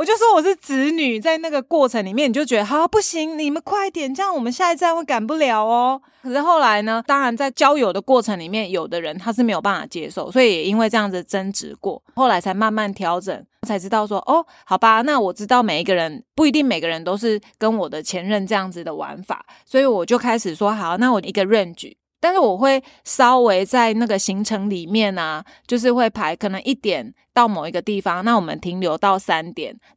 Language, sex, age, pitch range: Chinese, female, 20-39, 190-255 Hz